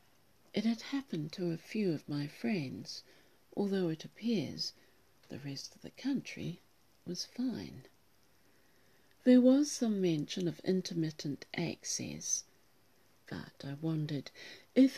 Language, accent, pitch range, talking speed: English, British, 150-205 Hz, 120 wpm